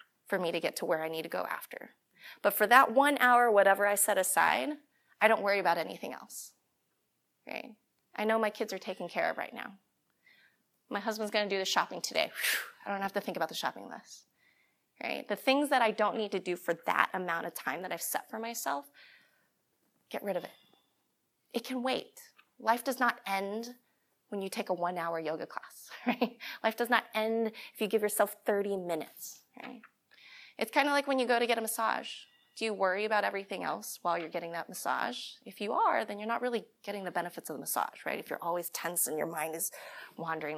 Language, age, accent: English, 20-39, American